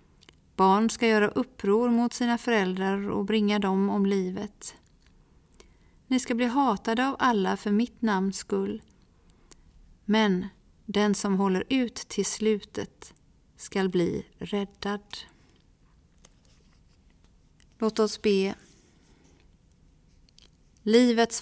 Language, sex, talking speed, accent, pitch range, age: Swedish, female, 100 wpm, native, 180-220 Hz, 40-59